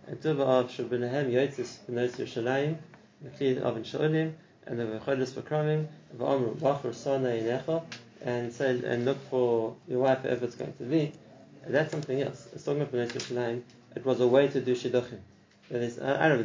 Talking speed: 105 wpm